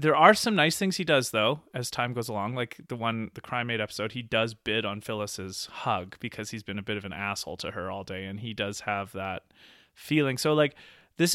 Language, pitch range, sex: English, 105-135 Hz, male